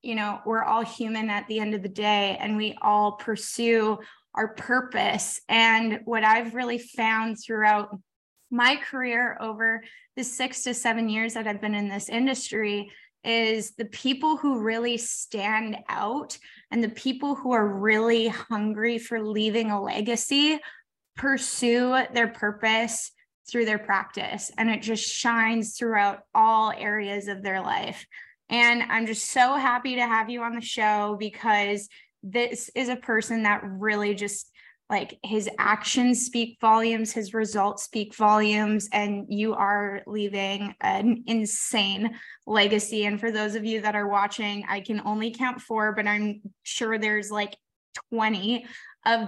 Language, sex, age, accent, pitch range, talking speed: English, female, 10-29, American, 210-235 Hz, 155 wpm